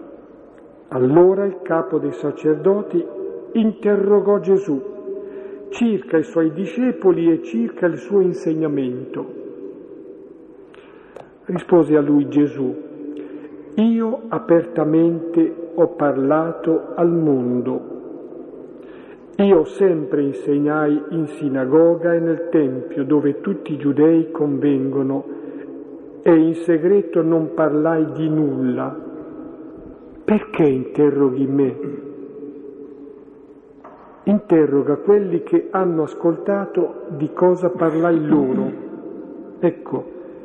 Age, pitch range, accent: 50-69, 150-205 Hz, native